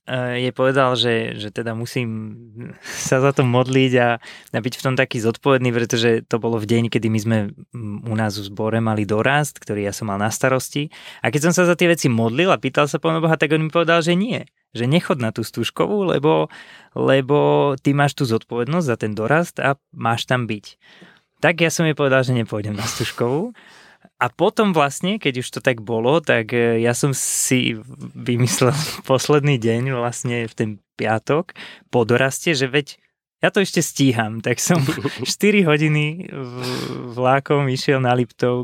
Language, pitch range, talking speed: Slovak, 120-145 Hz, 180 wpm